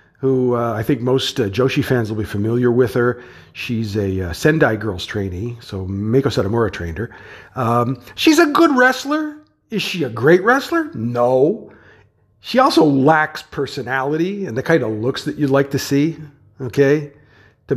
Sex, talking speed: male, 170 wpm